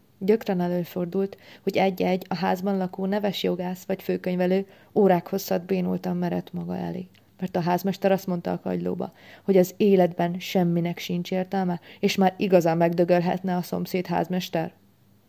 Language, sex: Hungarian, female